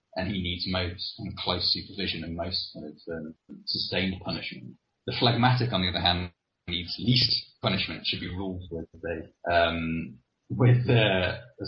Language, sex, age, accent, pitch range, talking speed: English, male, 30-49, British, 95-120 Hz, 170 wpm